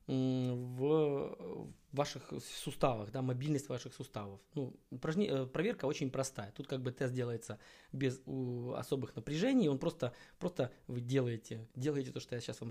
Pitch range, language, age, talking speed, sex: 125-155 Hz, Russian, 20-39, 135 wpm, male